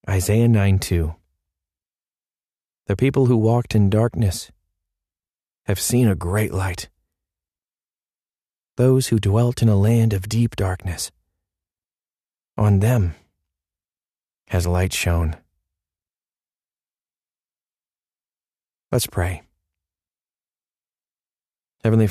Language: English